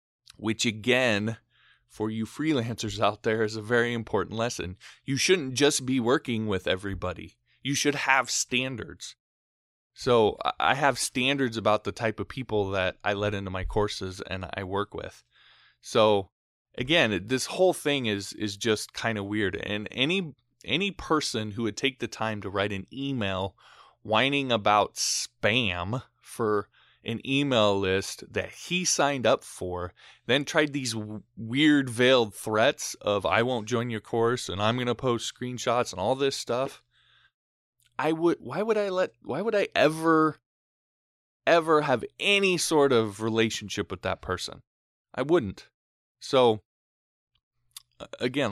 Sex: male